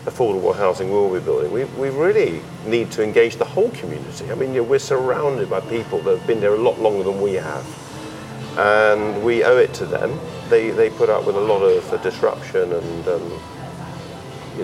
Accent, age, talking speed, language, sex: British, 40-59, 215 wpm, English, male